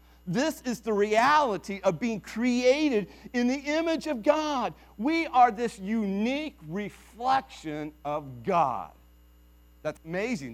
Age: 50-69